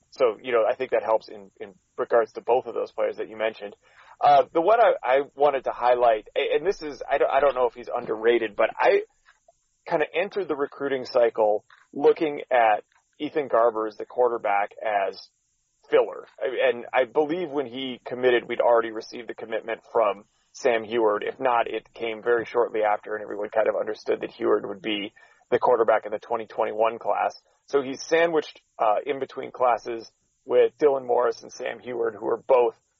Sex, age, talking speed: male, 30-49, 195 wpm